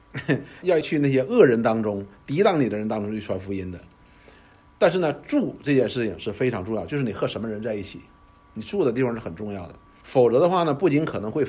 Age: 50-69